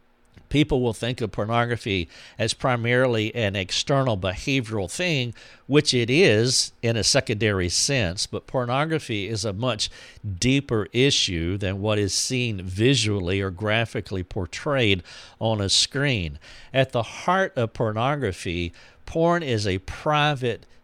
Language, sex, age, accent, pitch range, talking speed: English, male, 50-69, American, 100-125 Hz, 130 wpm